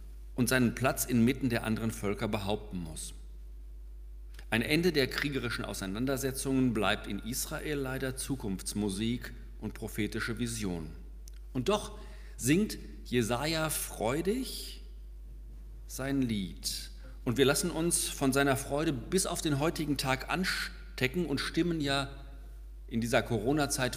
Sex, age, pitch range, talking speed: male, 50-69, 95-140 Hz, 120 wpm